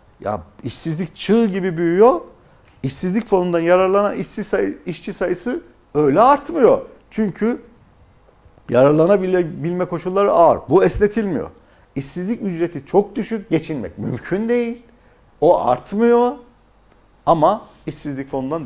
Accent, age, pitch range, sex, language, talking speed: native, 50-69, 125-180 Hz, male, Turkish, 105 wpm